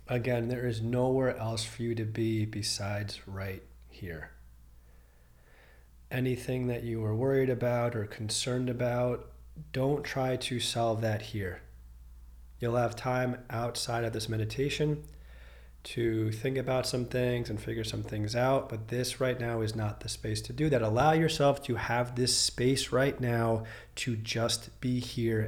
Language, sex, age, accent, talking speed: English, male, 30-49, American, 160 wpm